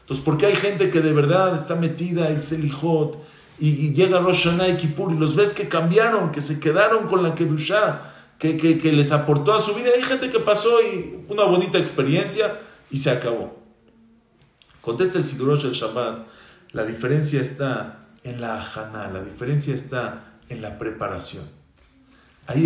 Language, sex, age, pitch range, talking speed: English, male, 40-59, 120-160 Hz, 175 wpm